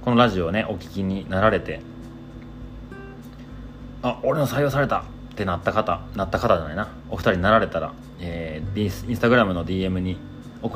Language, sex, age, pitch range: Japanese, male, 30-49, 90-125 Hz